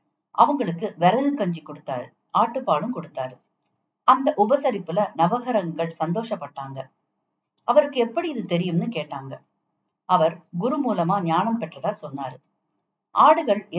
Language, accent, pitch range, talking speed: Tamil, native, 165-215 Hz, 55 wpm